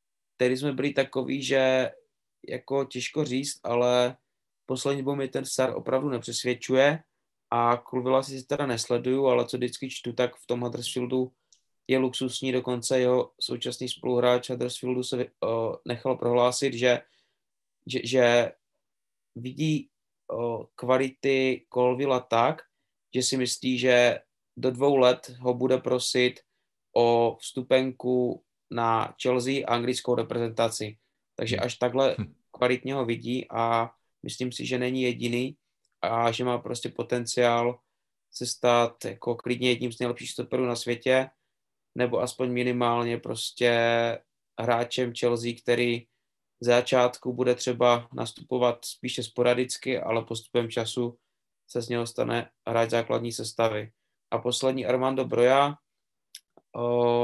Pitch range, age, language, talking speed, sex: 120-130 Hz, 20-39, Czech, 125 wpm, male